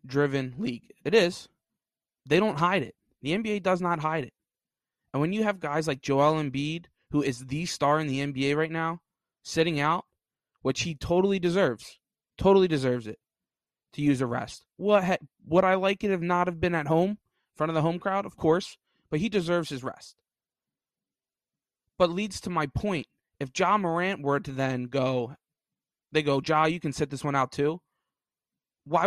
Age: 20-39